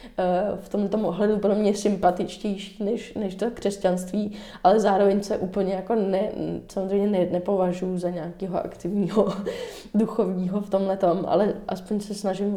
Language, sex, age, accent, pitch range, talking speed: Czech, female, 20-39, native, 185-210 Hz, 140 wpm